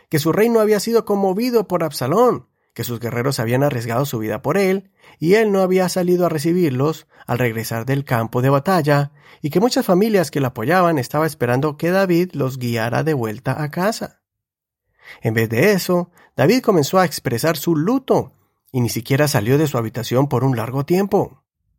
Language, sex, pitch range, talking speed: Spanish, male, 125-185 Hz, 185 wpm